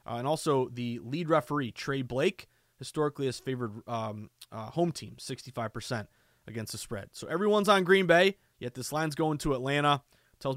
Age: 20-39